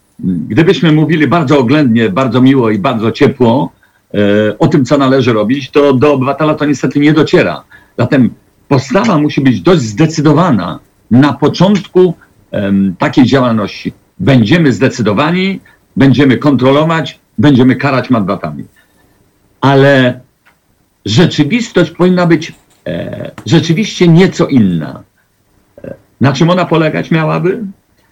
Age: 50-69